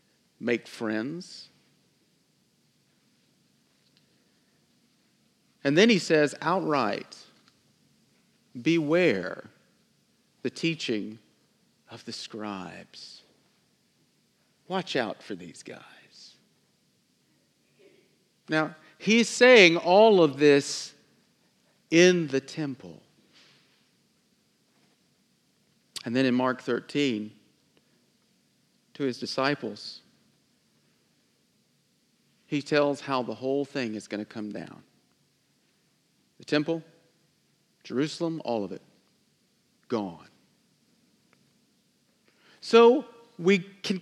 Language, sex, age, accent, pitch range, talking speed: English, male, 50-69, American, 125-175 Hz, 75 wpm